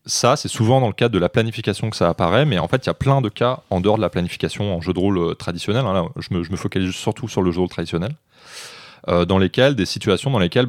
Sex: male